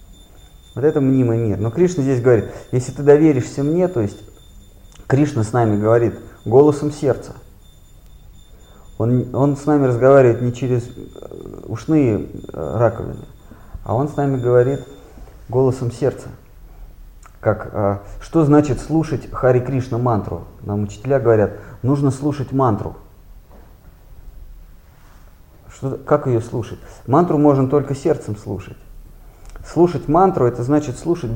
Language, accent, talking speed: Russian, native, 115 wpm